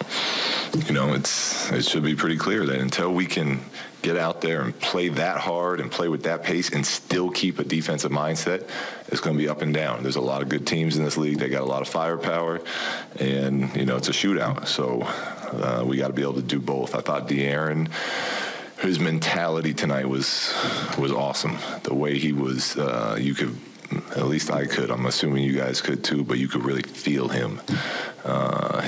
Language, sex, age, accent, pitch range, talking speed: English, male, 30-49, American, 65-75 Hz, 210 wpm